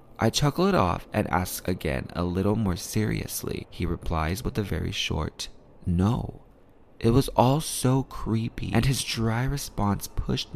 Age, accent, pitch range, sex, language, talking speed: 20-39, American, 95-115 Hz, male, English, 160 wpm